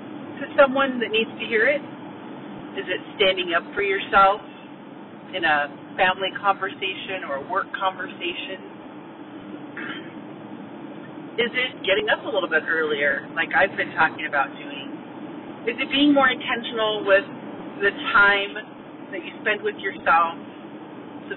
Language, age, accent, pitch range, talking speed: English, 40-59, American, 195-295 Hz, 140 wpm